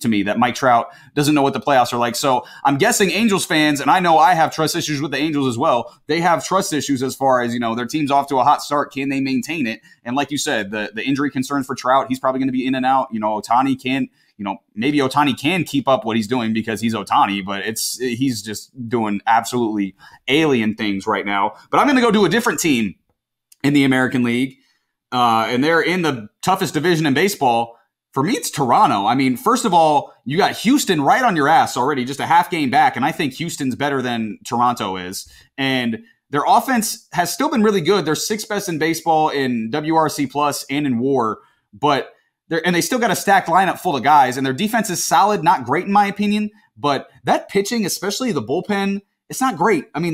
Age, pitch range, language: 30-49, 125-180 Hz, English